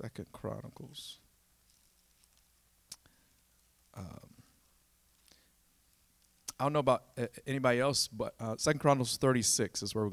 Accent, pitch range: American, 110-150 Hz